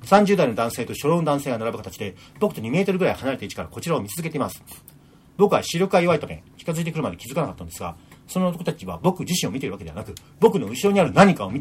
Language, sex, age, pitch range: Japanese, male, 40-59, 110-160 Hz